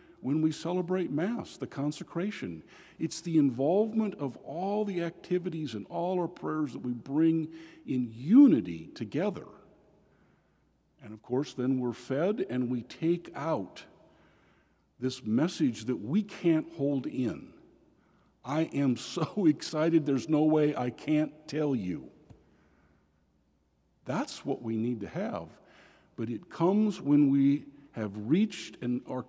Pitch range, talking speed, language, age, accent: 120-170 Hz, 135 wpm, English, 50-69, American